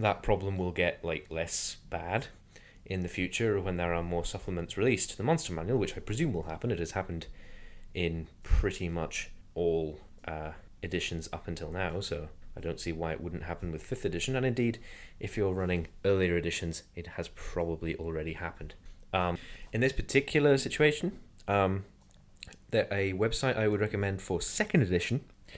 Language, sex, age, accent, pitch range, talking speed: English, male, 20-39, British, 85-105 Hz, 175 wpm